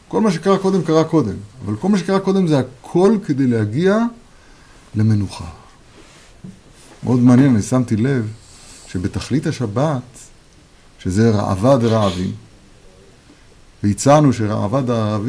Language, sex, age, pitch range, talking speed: Hebrew, male, 50-69, 105-150 Hz, 110 wpm